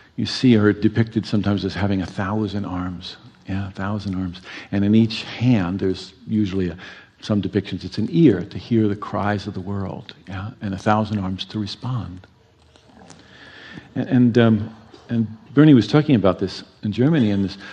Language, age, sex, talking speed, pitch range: English, 50-69, male, 180 wpm, 95-125 Hz